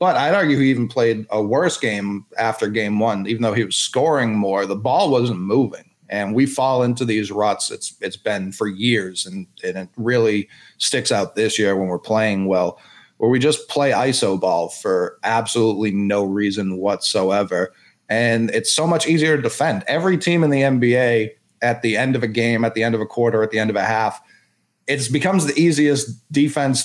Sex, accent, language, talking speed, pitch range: male, American, English, 205 wpm, 110-145 Hz